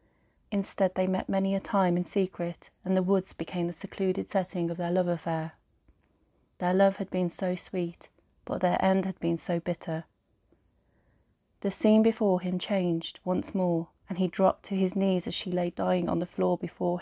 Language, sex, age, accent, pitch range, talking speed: English, female, 30-49, British, 175-195 Hz, 185 wpm